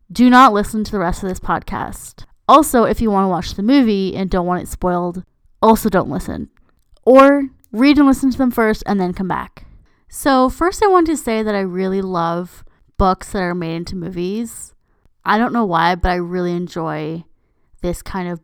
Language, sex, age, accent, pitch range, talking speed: English, female, 20-39, American, 180-225 Hz, 205 wpm